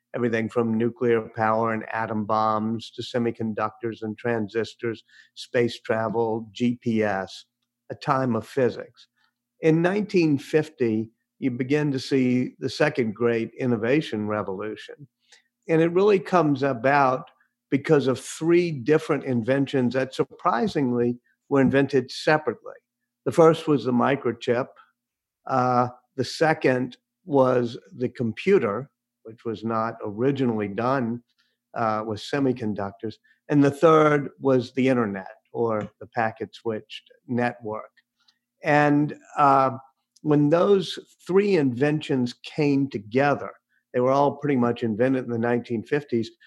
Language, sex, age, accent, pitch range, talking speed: English, male, 50-69, American, 115-140 Hz, 120 wpm